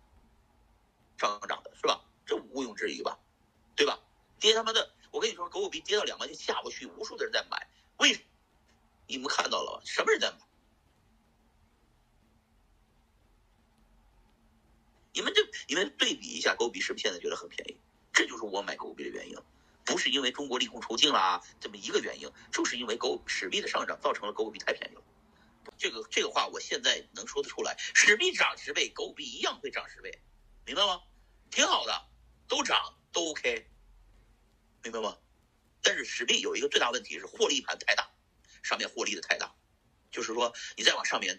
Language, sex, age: Chinese, male, 50-69